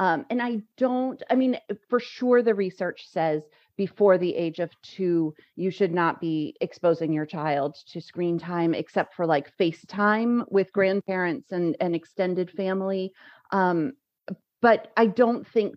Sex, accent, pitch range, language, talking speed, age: female, American, 170-225 Hz, English, 155 wpm, 30-49